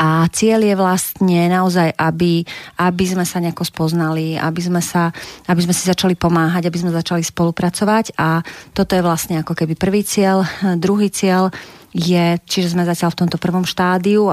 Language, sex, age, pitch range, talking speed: Slovak, female, 30-49, 160-180 Hz, 170 wpm